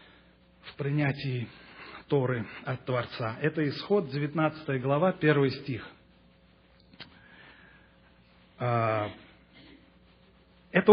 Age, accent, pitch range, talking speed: 40-59, native, 135-195 Hz, 65 wpm